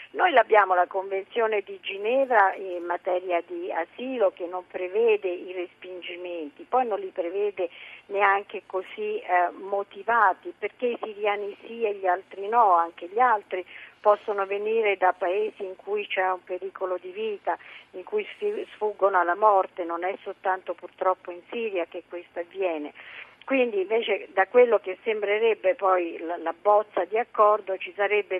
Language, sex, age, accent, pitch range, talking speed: Italian, female, 50-69, native, 185-225 Hz, 155 wpm